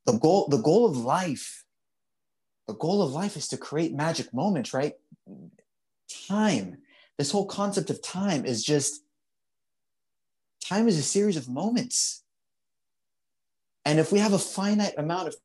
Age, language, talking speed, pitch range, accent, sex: 30-49, English, 150 wpm, 150-205 Hz, American, male